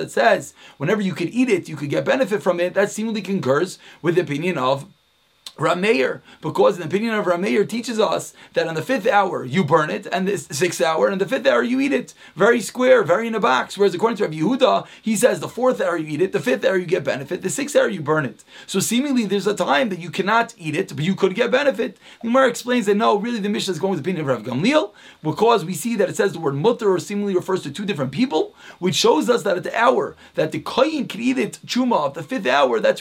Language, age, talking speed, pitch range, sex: English, 30-49, 260 wpm, 175-230 Hz, male